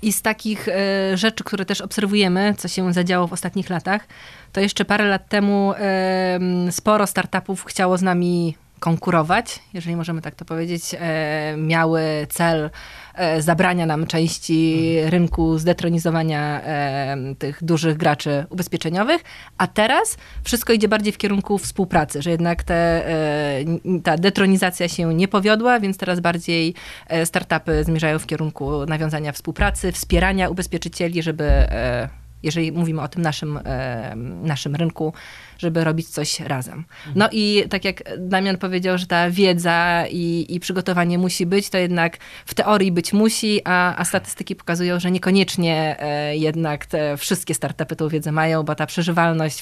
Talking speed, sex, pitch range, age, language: 140 wpm, female, 155-185 Hz, 20-39, Polish